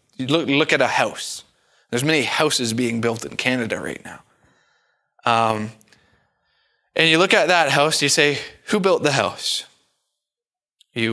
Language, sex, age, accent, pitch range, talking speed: English, male, 20-39, American, 120-160 Hz, 155 wpm